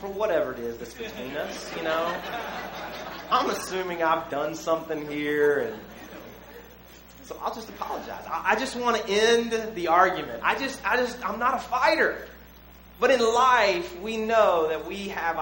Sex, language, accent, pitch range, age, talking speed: male, English, American, 155-240 Hz, 30-49, 165 wpm